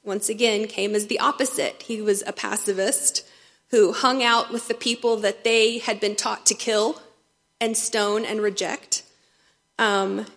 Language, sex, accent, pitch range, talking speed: English, female, American, 210-250 Hz, 160 wpm